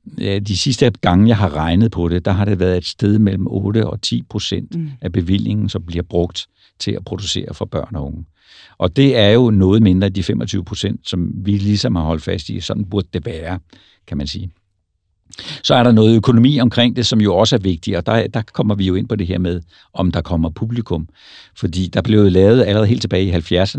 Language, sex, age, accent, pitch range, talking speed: Danish, male, 60-79, native, 90-110 Hz, 225 wpm